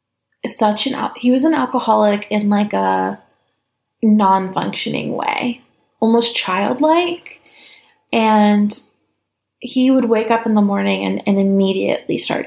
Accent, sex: American, female